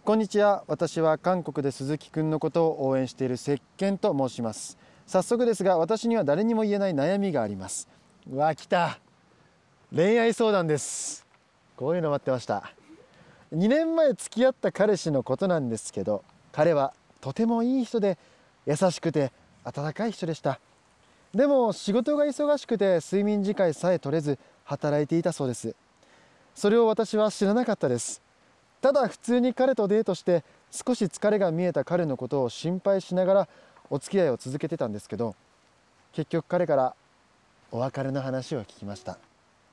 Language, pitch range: Japanese, 140-215 Hz